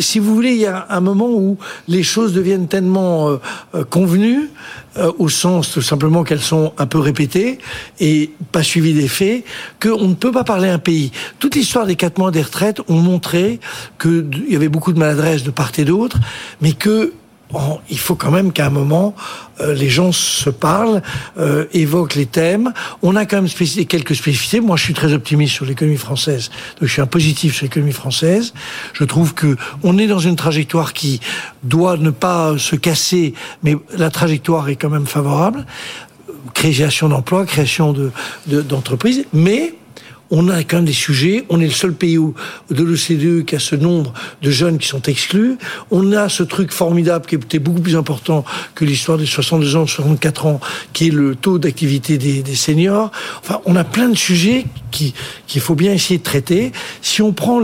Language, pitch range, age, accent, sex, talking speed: French, 145-180 Hz, 60-79, French, male, 195 wpm